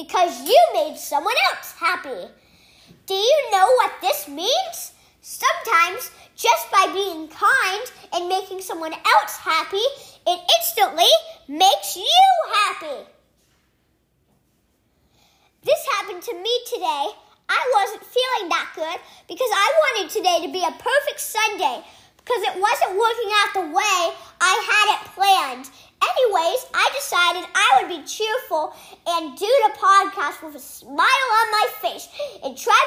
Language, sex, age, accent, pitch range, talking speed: English, male, 40-59, American, 320-425 Hz, 135 wpm